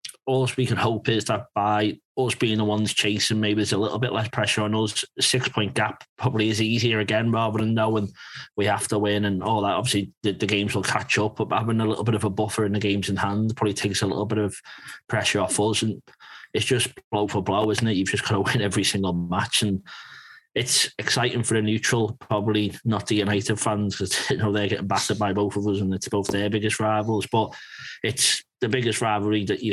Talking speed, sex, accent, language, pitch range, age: 235 wpm, male, British, English, 100-110 Hz, 20-39